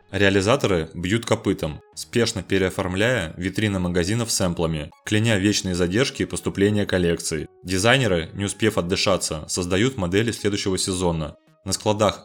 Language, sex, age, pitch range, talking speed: Russian, male, 20-39, 90-110 Hz, 115 wpm